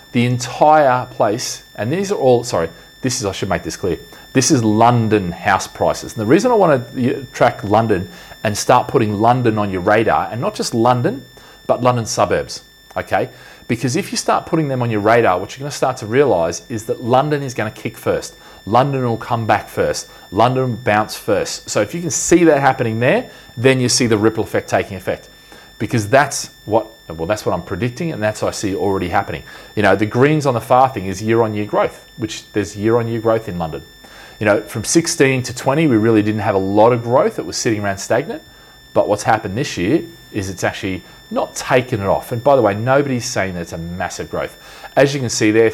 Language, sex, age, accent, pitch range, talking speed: English, male, 40-59, Australian, 105-130 Hz, 220 wpm